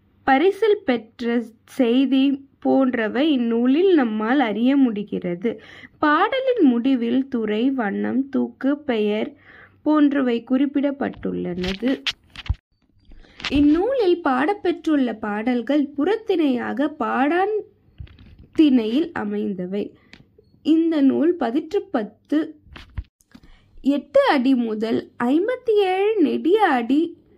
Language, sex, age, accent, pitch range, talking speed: Tamil, female, 20-39, native, 230-300 Hz, 70 wpm